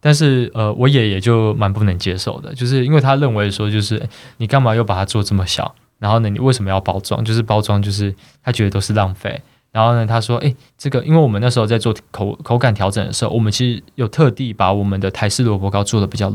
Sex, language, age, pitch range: male, Chinese, 20-39, 105-125 Hz